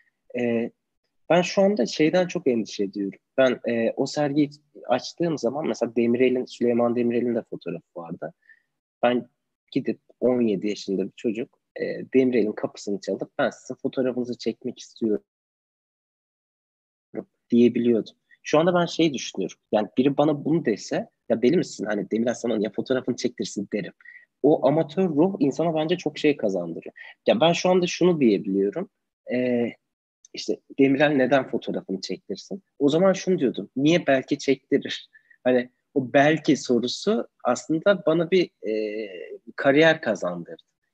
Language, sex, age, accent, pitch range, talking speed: Turkish, male, 30-49, native, 115-160 Hz, 135 wpm